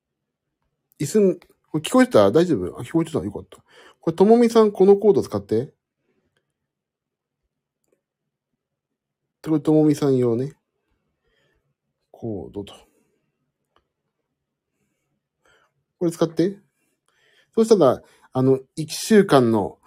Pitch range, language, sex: 120-195 Hz, Japanese, male